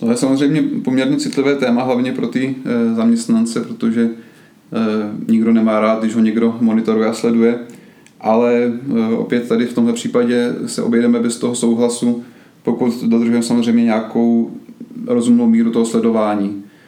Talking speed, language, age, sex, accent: 140 wpm, Czech, 30-49, male, native